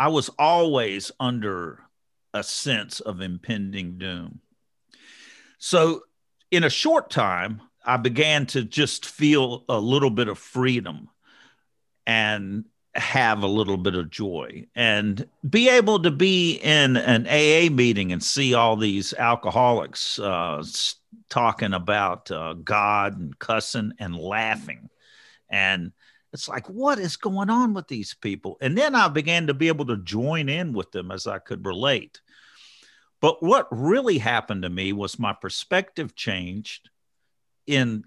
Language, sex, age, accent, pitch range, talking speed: English, male, 50-69, American, 100-135 Hz, 145 wpm